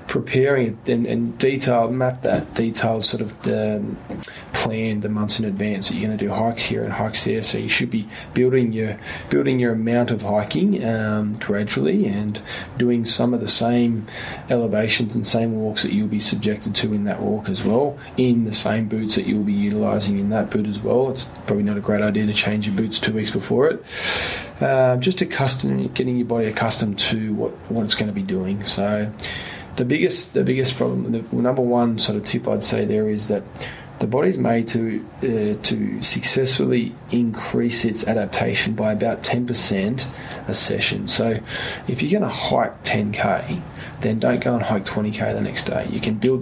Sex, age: male, 20-39